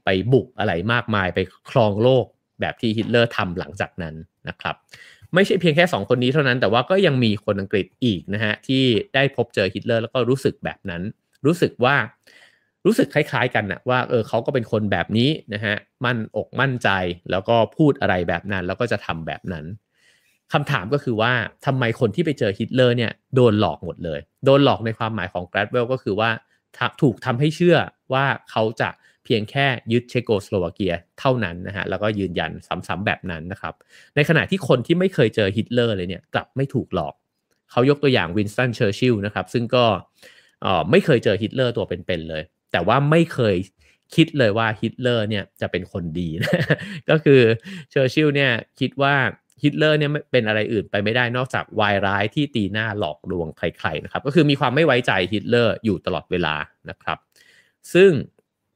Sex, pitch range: male, 100-130 Hz